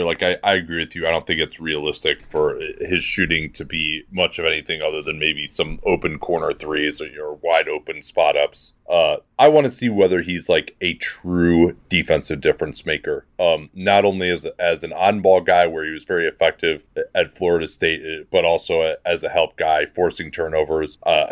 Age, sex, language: 30-49, male, English